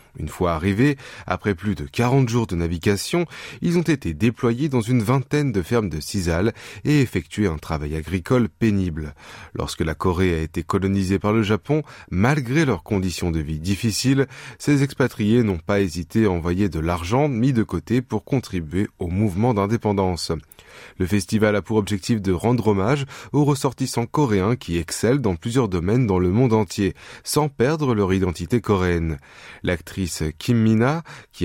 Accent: French